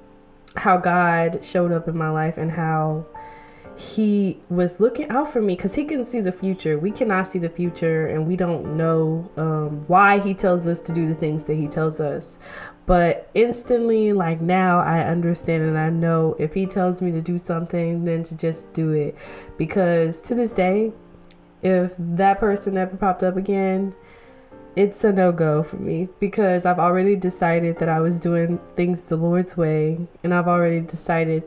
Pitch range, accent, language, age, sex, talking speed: 160-190 Hz, American, English, 20-39, female, 185 wpm